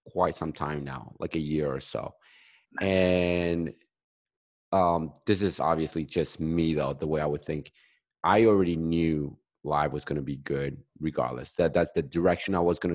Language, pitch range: English, 75-95 Hz